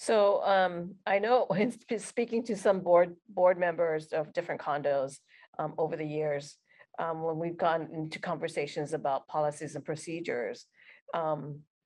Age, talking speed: 40-59, 145 wpm